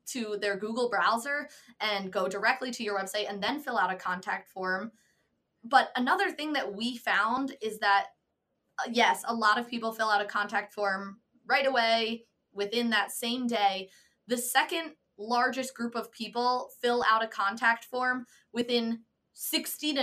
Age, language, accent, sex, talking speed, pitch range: 20-39, English, American, female, 165 wpm, 210-255 Hz